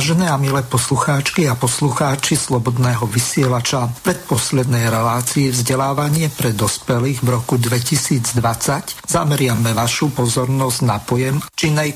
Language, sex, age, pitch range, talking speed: Slovak, male, 50-69, 125-145 Hz, 110 wpm